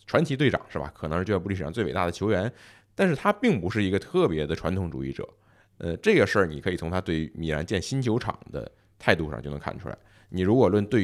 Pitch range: 80-110 Hz